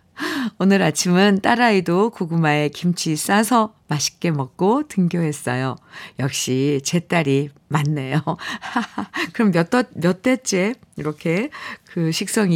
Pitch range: 155-210 Hz